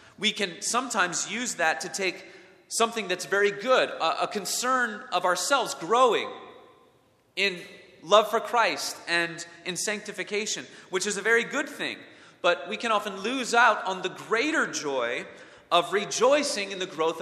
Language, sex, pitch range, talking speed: English, male, 155-230 Hz, 155 wpm